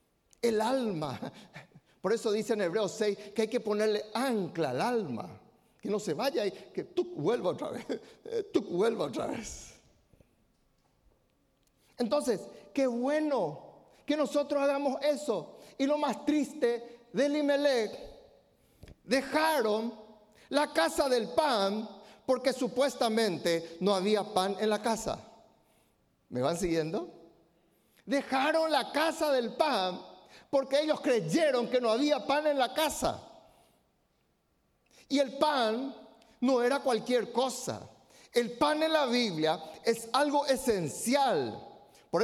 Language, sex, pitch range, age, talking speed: Spanish, male, 215-285 Hz, 50-69, 125 wpm